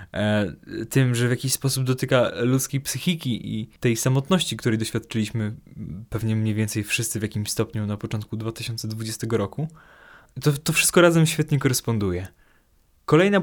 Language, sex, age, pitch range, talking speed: Polish, male, 20-39, 115-145 Hz, 140 wpm